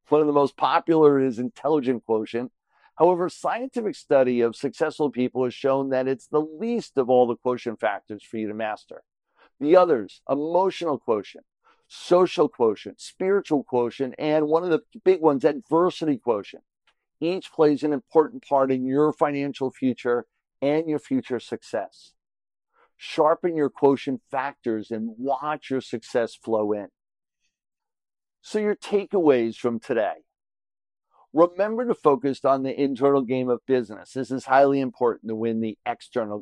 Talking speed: 150 wpm